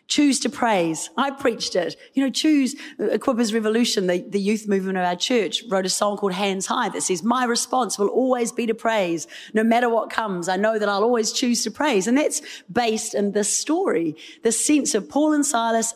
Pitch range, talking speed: 190-255 Hz, 215 wpm